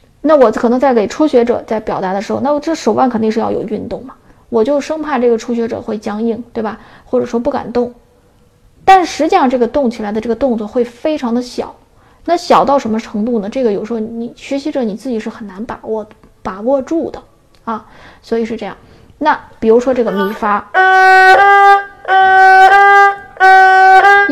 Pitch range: 220-305 Hz